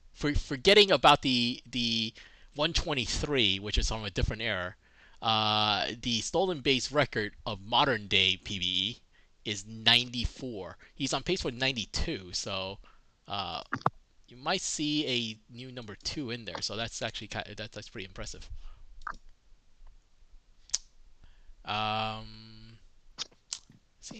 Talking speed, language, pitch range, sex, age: 130 wpm, English, 95-130 Hz, male, 20-39